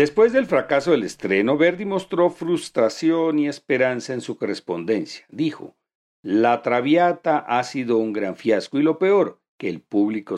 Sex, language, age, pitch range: male, Spanish, 50-69, 105-165 Hz